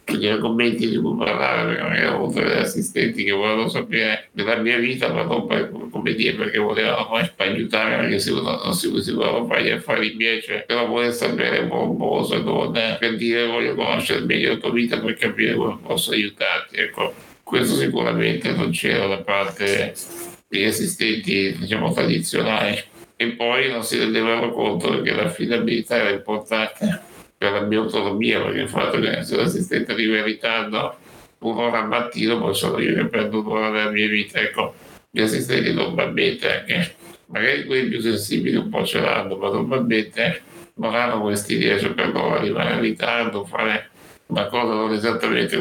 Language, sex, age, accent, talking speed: Italian, male, 60-79, native, 170 wpm